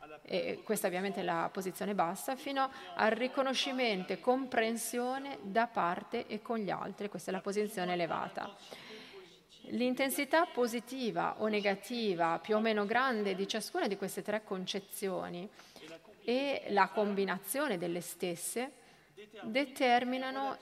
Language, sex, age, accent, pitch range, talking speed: Italian, female, 30-49, native, 195-245 Hz, 125 wpm